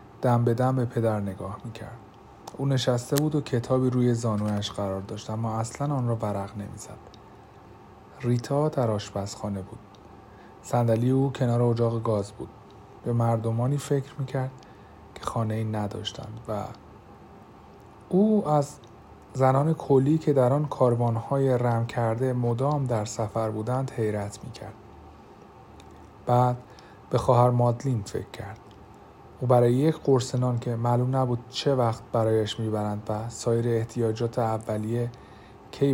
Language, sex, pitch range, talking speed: Persian, male, 105-125 Hz, 130 wpm